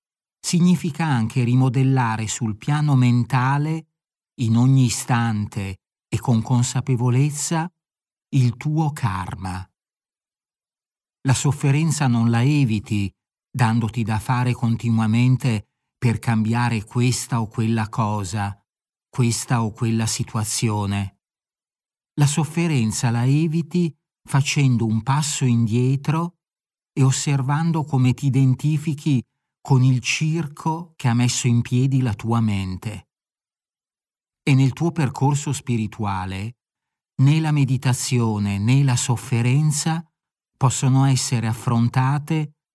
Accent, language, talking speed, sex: native, Italian, 100 wpm, male